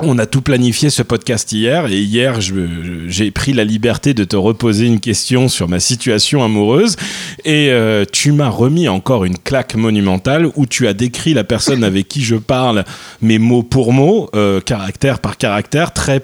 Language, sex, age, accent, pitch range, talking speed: French, male, 30-49, French, 110-150 Hz, 190 wpm